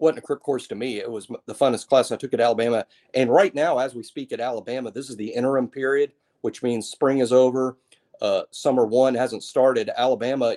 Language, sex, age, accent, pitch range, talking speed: English, male, 40-59, American, 110-140 Hz, 220 wpm